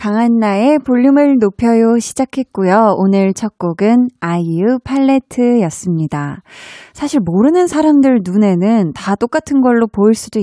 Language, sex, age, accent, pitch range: Korean, female, 20-39, native, 190-255 Hz